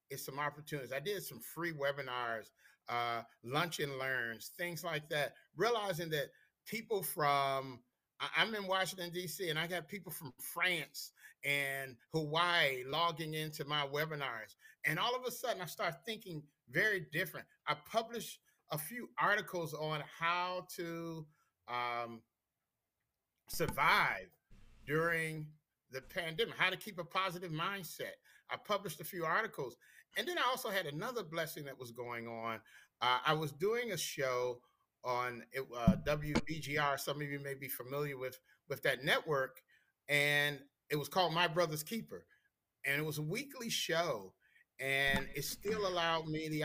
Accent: American